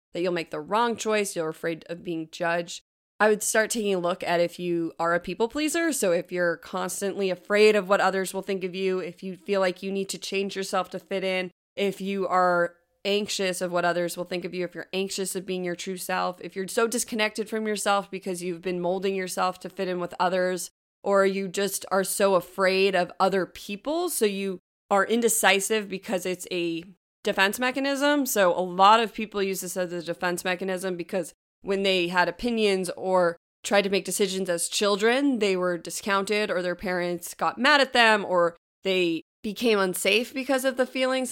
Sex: female